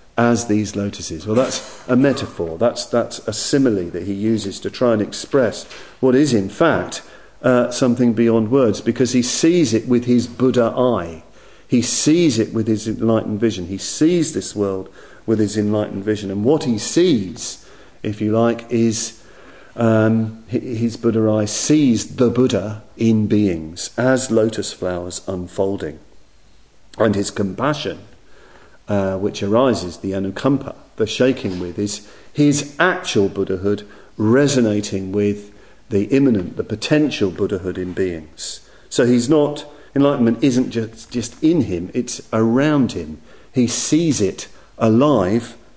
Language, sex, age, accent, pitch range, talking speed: English, male, 40-59, British, 100-125 Hz, 145 wpm